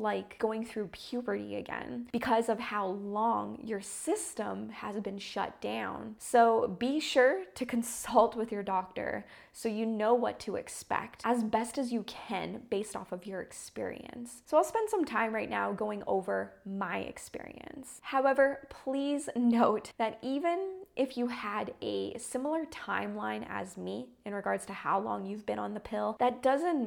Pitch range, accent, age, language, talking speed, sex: 205-250 Hz, American, 20-39, English, 165 wpm, female